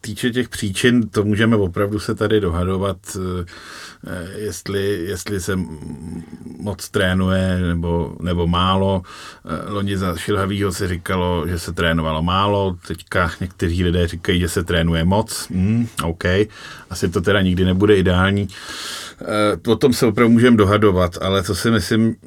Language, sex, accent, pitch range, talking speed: Czech, male, native, 90-105 Hz, 145 wpm